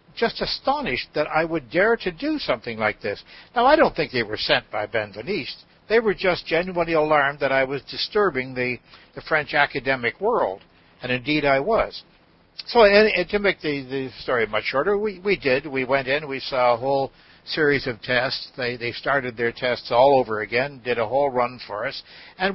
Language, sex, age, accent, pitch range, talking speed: English, male, 60-79, American, 120-150 Hz, 195 wpm